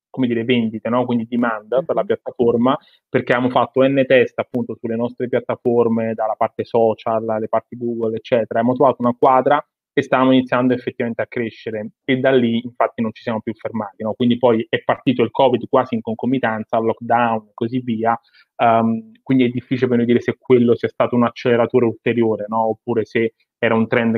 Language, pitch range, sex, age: Italian, 110-125 Hz, male, 30-49